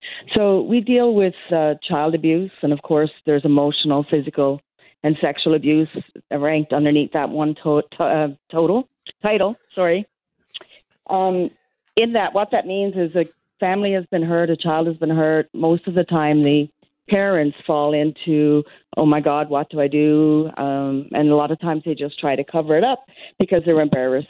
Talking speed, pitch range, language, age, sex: 185 wpm, 150-180 Hz, English, 40-59, female